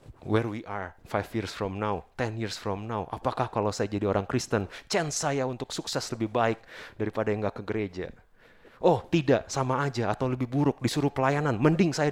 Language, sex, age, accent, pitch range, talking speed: Indonesian, male, 30-49, native, 105-135 Hz, 195 wpm